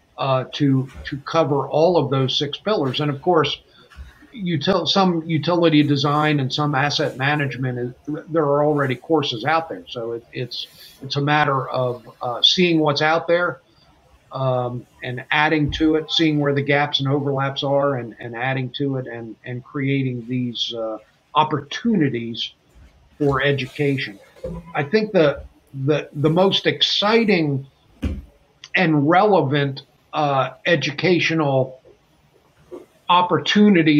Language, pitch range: English, 130-155 Hz